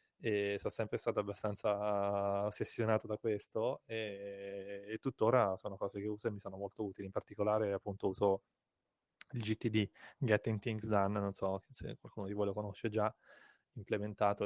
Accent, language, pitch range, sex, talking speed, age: native, Italian, 100-110 Hz, male, 160 wpm, 20-39